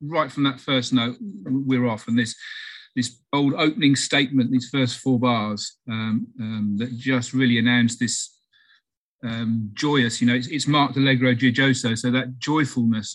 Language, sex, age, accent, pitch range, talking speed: English, male, 40-59, British, 115-130 Hz, 165 wpm